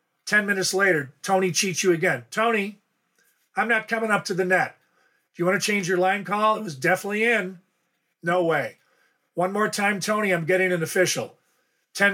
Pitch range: 160-195 Hz